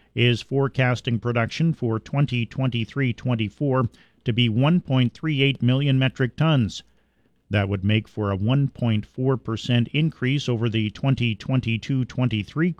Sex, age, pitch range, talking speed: male, 40-59, 110-130 Hz, 100 wpm